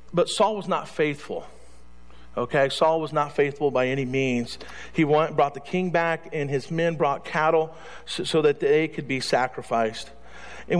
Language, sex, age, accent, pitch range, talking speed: English, male, 50-69, American, 125-160 Hz, 180 wpm